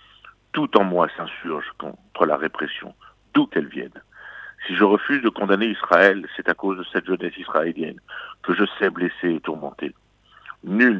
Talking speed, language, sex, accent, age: 165 wpm, French, male, French, 60-79